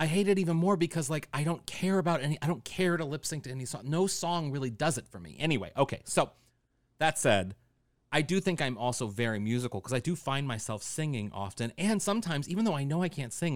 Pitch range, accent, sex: 110-155 Hz, American, male